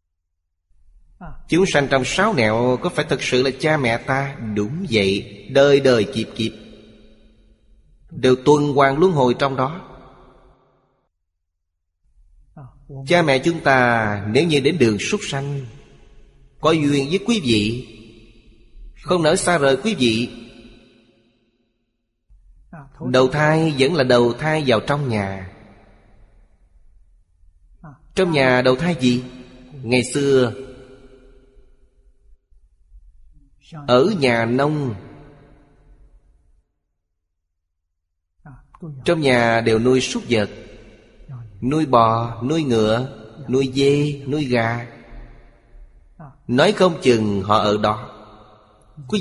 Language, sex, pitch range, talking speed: Vietnamese, male, 110-140 Hz, 105 wpm